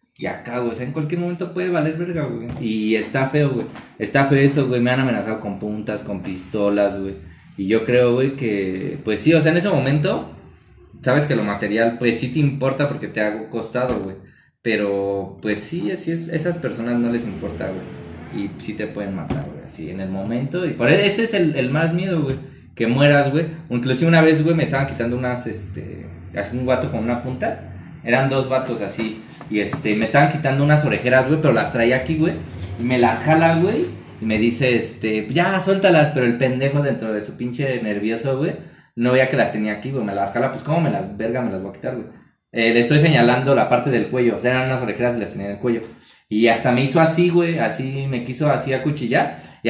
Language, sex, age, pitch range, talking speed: Spanish, male, 20-39, 110-145 Hz, 230 wpm